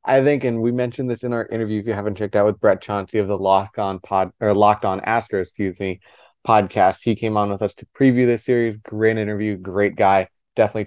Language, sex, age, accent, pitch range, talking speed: English, male, 20-39, American, 100-115 Hz, 235 wpm